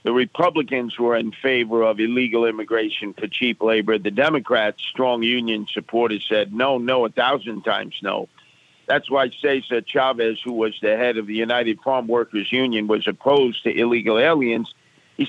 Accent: American